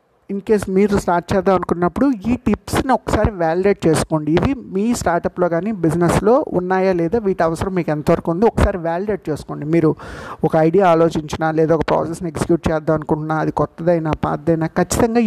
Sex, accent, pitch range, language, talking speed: male, native, 155-190 Hz, Telugu, 160 wpm